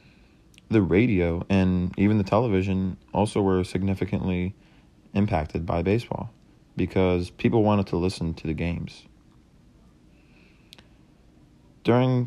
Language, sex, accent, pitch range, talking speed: English, male, American, 90-110 Hz, 105 wpm